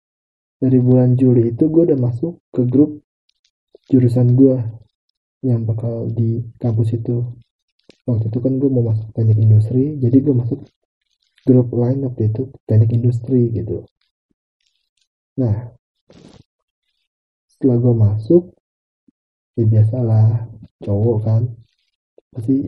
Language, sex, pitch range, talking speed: English, male, 115-135 Hz, 110 wpm